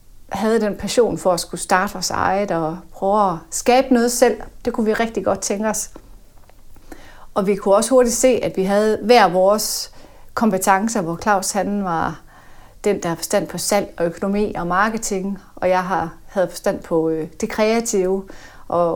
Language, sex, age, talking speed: Danish, female, 30-49, 180 wpm